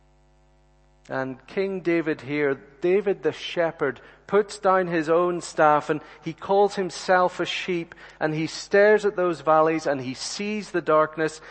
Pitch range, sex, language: 135-170 Hz, male, English